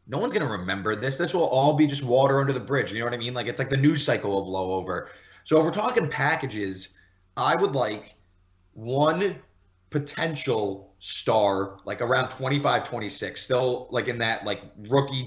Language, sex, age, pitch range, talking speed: English, male, 20-39, 105-145 Hz, 195 wpm